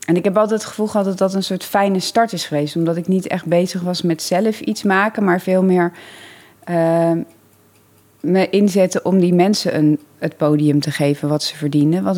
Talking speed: 205 wpm